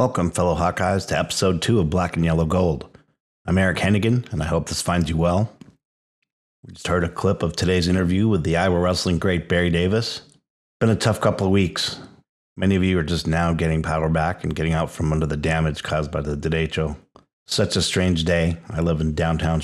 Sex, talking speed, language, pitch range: male, 215 wpm, English, 80-90 Hz